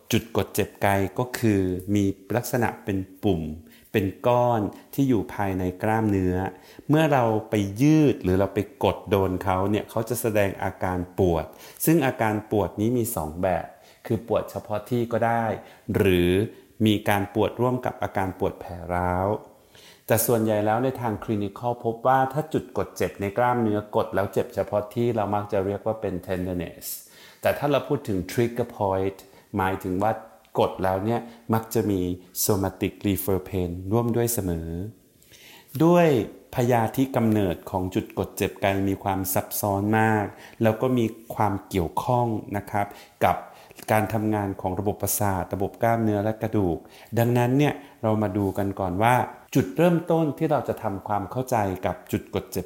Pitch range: 95-115 Hz